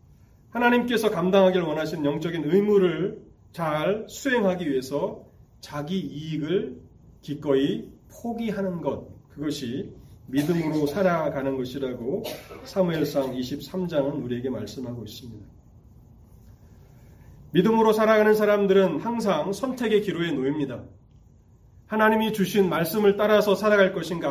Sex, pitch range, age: male, 140-195 Hz, 30-49